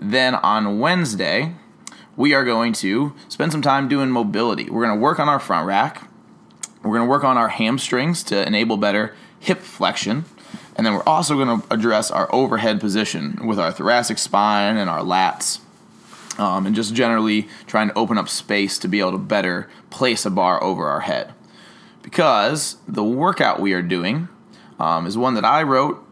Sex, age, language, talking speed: male, 20-39, English, 185 wpm